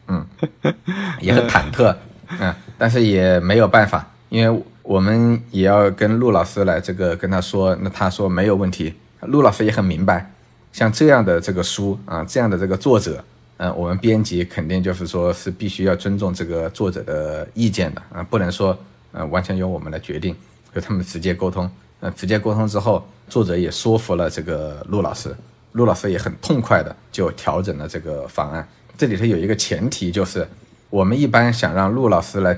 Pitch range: 90-110 Hz